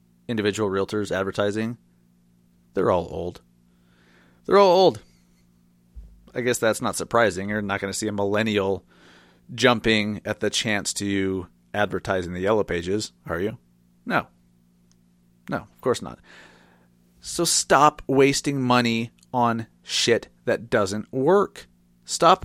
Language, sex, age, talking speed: English, male, 30-49, 130 wpm